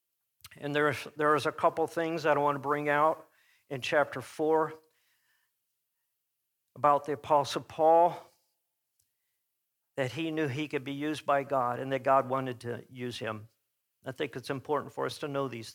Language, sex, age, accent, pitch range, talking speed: English, male, 50-69, American, 150-190 Hz, 165 wpm